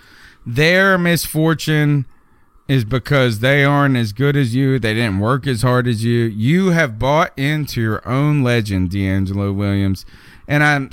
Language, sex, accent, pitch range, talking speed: English, male, American, 115-165 Hz, 155 wpm